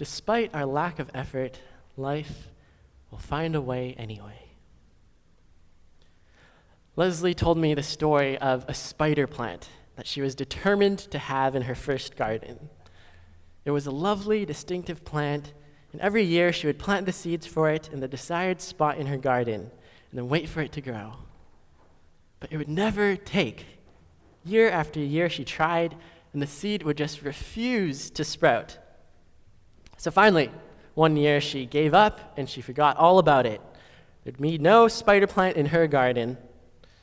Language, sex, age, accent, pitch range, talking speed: English, male, 20-39, American, 120-170 Hz, 160 wpm